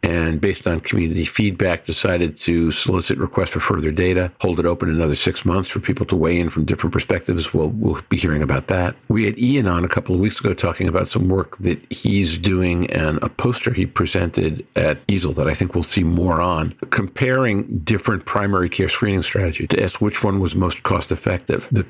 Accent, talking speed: American, 210 wpm